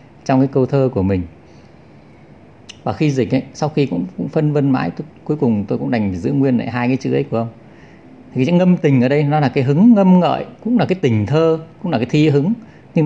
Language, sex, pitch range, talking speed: English, male, 110-145 Hz, 275 wpm